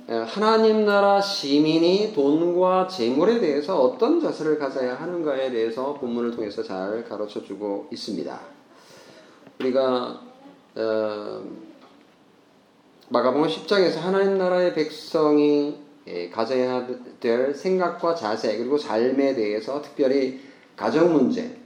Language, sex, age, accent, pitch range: Korean, male, 30-49, native, 115-175 Hz